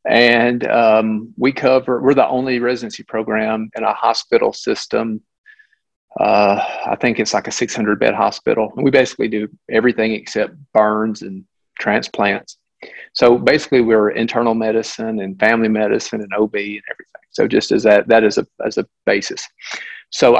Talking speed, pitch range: 155 wpm, 110-125 Hz